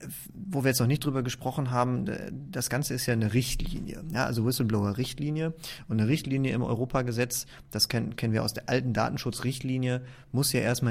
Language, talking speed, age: German, 180 wpm, 30-49